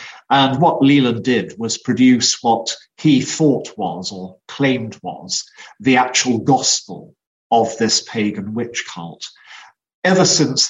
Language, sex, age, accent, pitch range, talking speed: English, male, 50-69, British, 110-135 Hz, 130 wpm